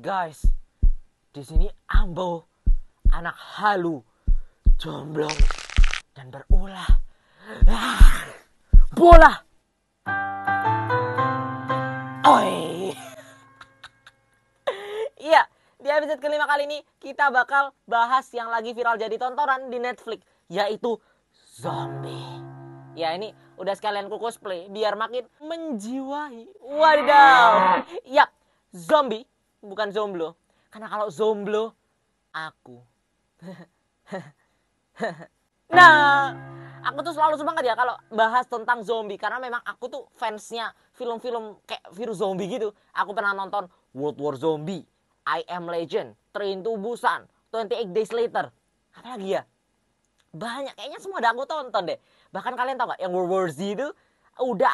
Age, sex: 20-39, female